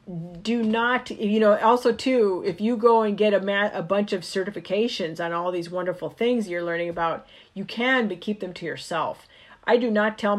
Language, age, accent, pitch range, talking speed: English, 40-59, American, 170-215 Hz, 210 wpm